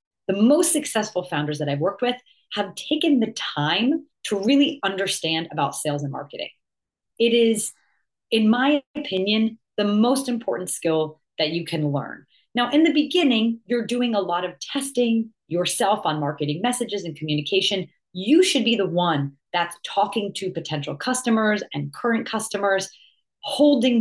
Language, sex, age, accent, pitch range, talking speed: English, female, 30-49, American, 175-245 Hz, 155 wpm